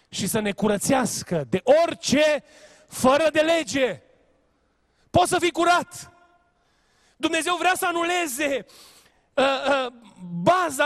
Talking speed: 110 wpm